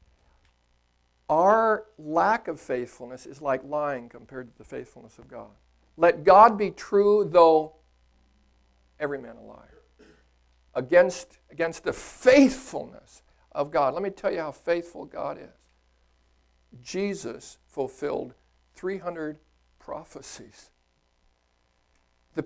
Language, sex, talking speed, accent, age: English, male, 110 wpm, American, 60-79